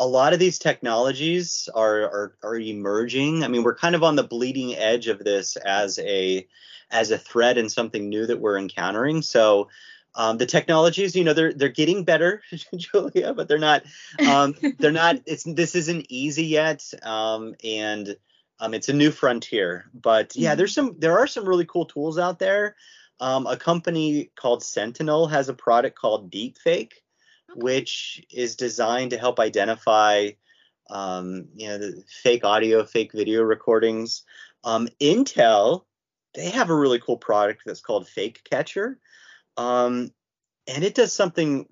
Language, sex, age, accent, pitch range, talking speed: English, male, 30-49, American, 115-165 Hz, 165 wpm